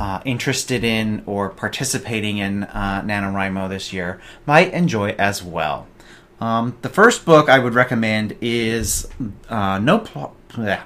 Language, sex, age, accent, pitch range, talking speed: English, male, 30-49, American, 100-135 Hz, 125 wpm